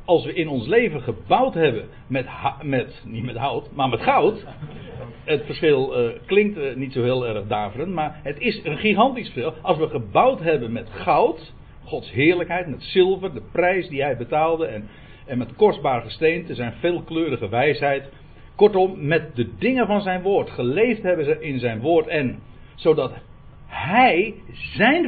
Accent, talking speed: Dutch, 170 wpm